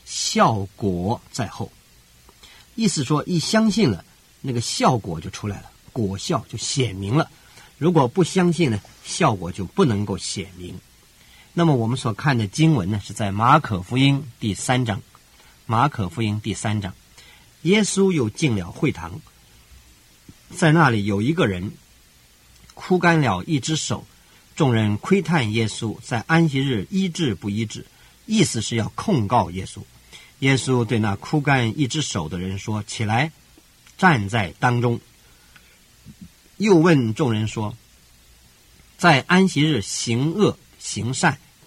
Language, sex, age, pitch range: Chinese, male, 50-69, 100-150 Hz